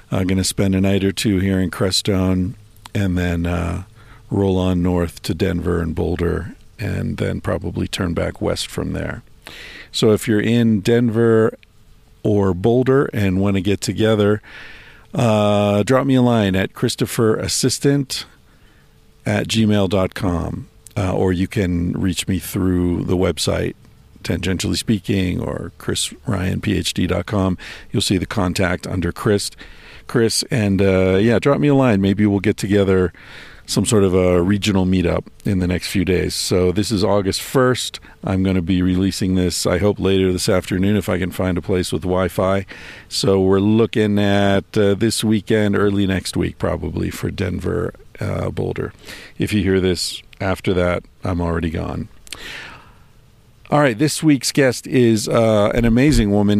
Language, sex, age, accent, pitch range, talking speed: English, male, 50-69, American, 90-110 Hz, 160 wpm